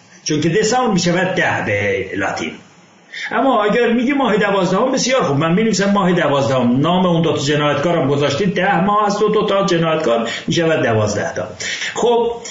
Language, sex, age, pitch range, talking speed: English, male, 60-79, 145-210 Hz, 175 wpm